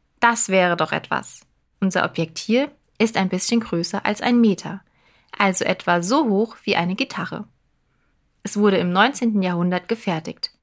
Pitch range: 180-235 Hz